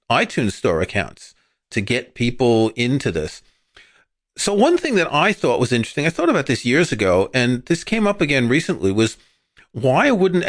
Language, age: English, 40-59